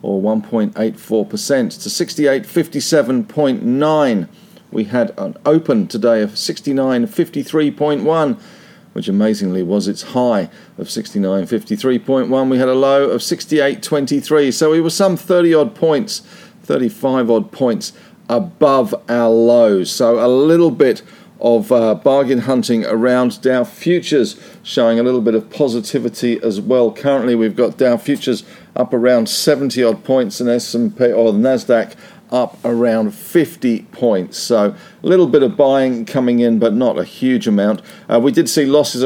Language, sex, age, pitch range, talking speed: English, male, 40-59, 120-165 Hz, 175 wpm